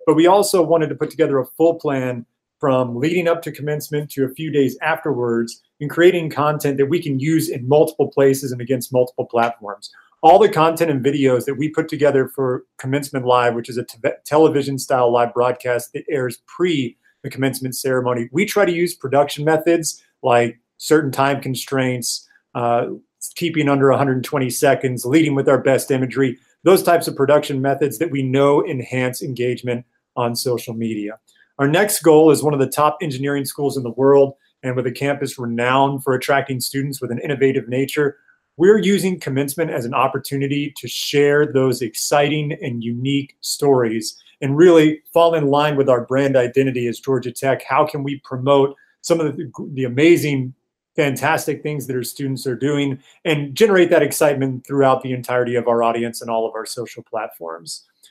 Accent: American